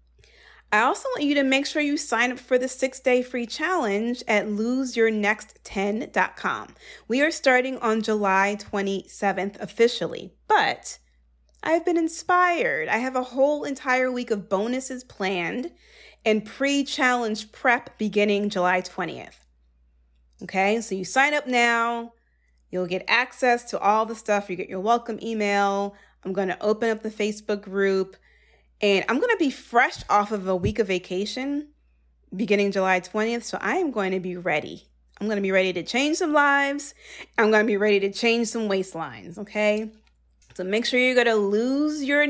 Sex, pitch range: female, 195-255 Hz